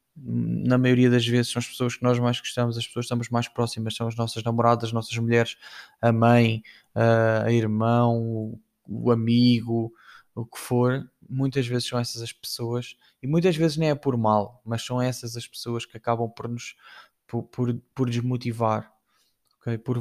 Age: 20-39